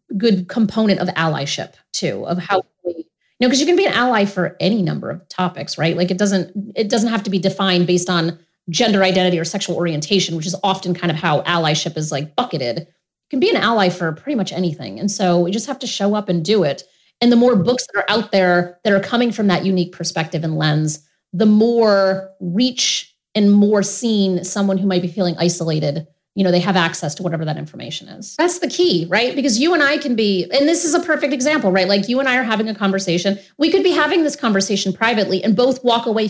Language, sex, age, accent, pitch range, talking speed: English, female, 30-49, American, 180-235 Hz, 235 wpm